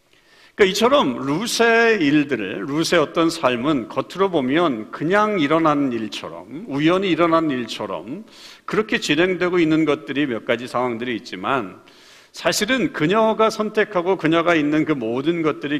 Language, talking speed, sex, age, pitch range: English, 115 wpm, male, 50-69, 145-215 Hz